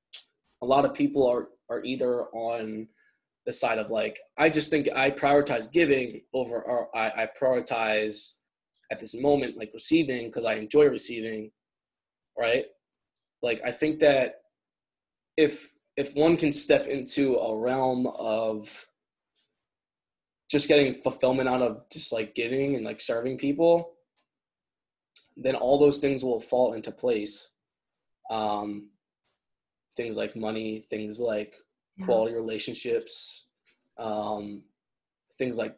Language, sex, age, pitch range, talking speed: English, male, 20-39, 110-150 Hz, 130 wpm